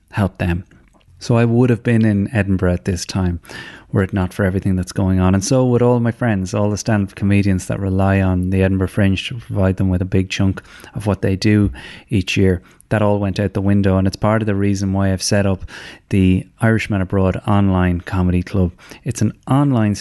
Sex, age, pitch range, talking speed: male, 30-49, 95-110 Hz, 220 wpm